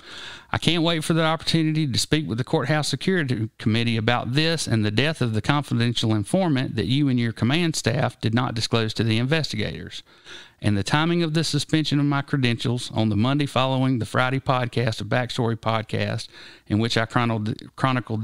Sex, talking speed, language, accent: male, 190 wpm, English, American